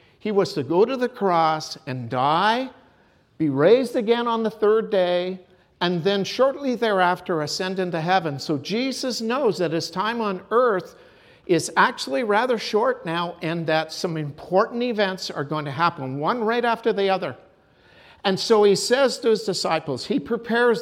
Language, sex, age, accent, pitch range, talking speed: English, male, 50-69, American, 155-220 Hz, 170 wpm